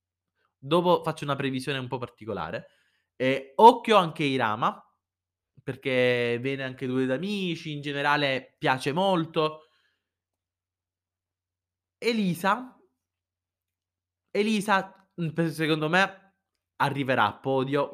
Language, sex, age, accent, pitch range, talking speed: Italian, male, 20-39, native, 120-175 Hz, 90 wpm